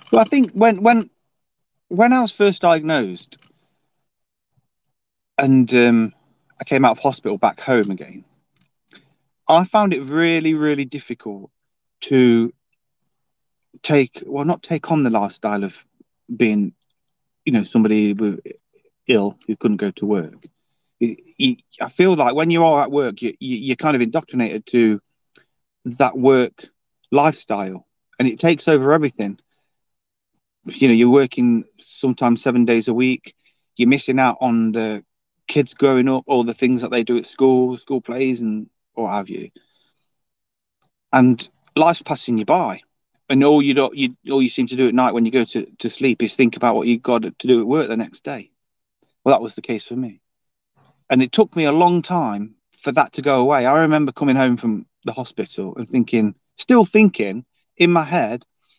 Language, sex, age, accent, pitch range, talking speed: English, male, 40-59, British, 120-160 Hz, 170 wpm